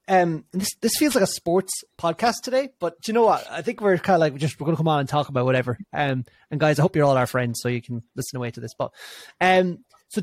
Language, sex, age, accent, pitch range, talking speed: English, male, 30-49, Irish, 130-180 Hz, 295 wpm